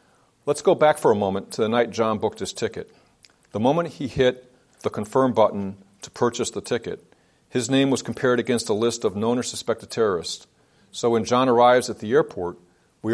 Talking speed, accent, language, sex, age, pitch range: 200 wpm, American, English, male, 50-69, 105-125 Hz